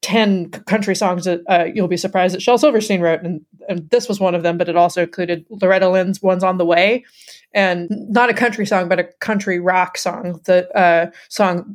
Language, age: English, 20-39